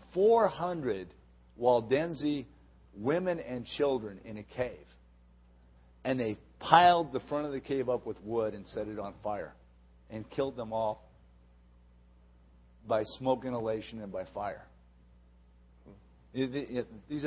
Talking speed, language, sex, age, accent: 120 wpm, English, male, 50-69, American